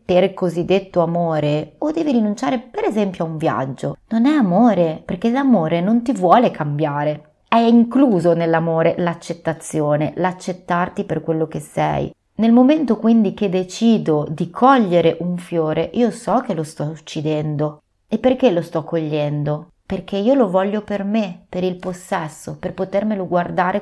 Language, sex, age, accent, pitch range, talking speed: Italian, female, 30-49, native, 155-210 Hz, 155 wpm